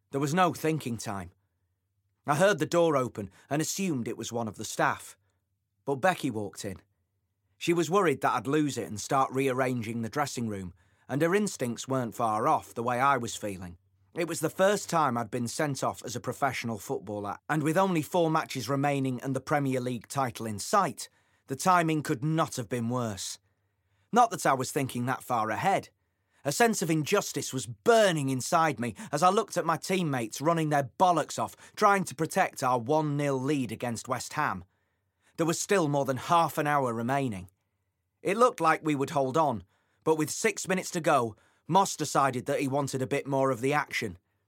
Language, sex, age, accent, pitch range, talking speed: English, male, 30-49, British, 110-160 Hz, 200 wpm